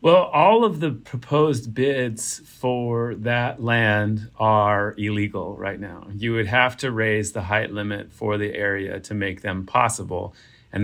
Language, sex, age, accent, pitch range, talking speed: English, male, 40-59, American, 100-115 Hz, 160 wpm